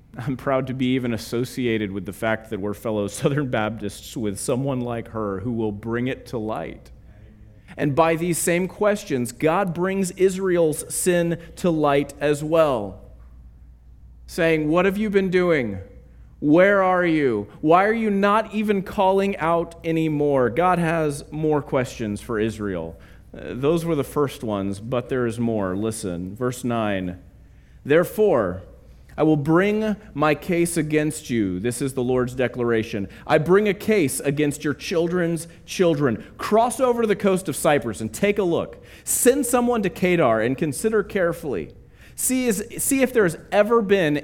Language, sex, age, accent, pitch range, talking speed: English, male, 30-49, American, 105-175 Hz, 160 wpm